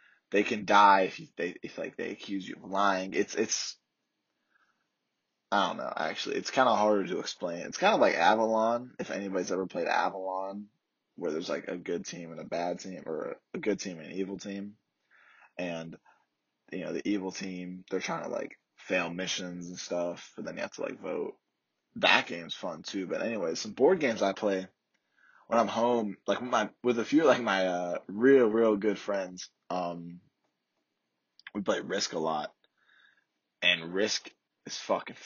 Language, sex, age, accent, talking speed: English, male, 20-39, American, 185 wpm